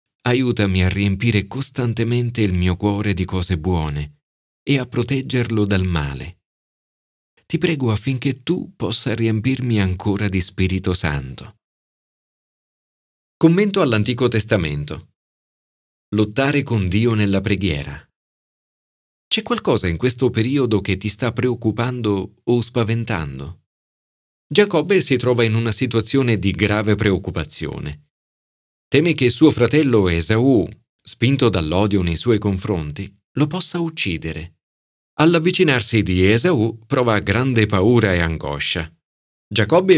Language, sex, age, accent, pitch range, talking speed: Italian, male, 30-49, native, 95-130 Hz, 115 wpm